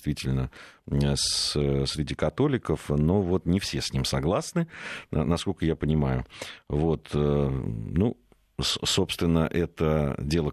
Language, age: Russian, 50-69